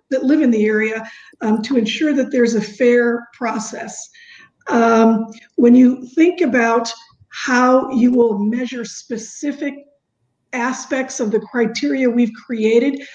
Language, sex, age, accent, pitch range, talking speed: English, female, 50-69, American, 225-265 Hz, 130 wpm